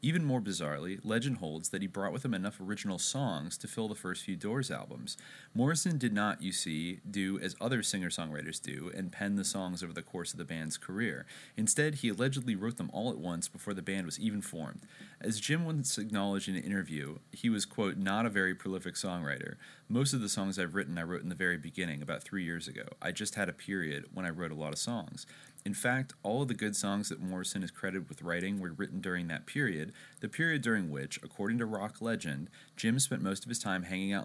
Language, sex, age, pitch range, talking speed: English, male, 30-49, 85-110 Hz, 230 wpm